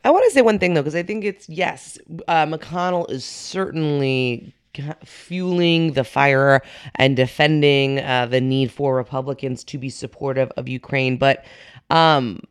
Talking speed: 160 wpm